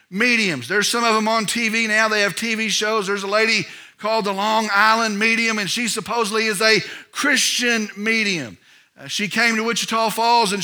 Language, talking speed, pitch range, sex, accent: English, 190 wpm, 205-275 Hz, male, American